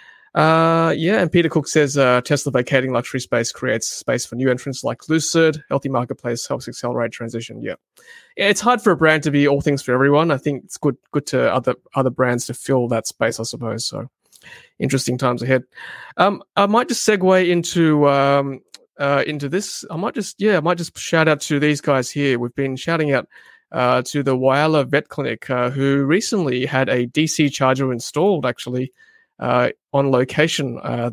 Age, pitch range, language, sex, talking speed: 20-39, 125-155 Hz, English, male, 195 wpm